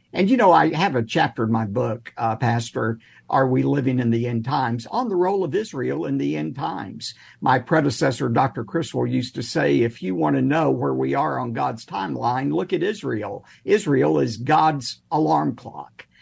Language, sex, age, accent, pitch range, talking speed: English, male, 50-69, American, 120-175 Hz, 195 wpm